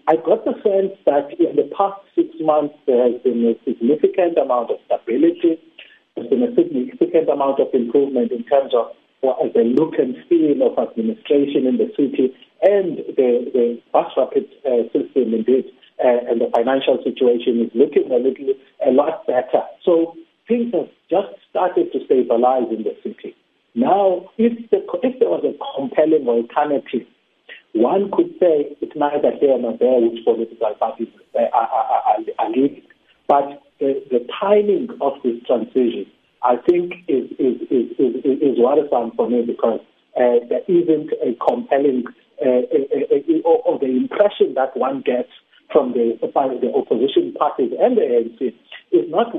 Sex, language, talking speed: male, English, 160 wpm